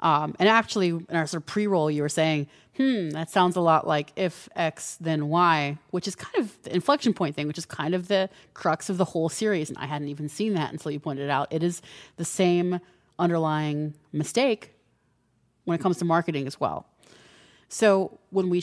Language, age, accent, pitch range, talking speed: English, 30-49, American, 150-190 Hz, 215 wpm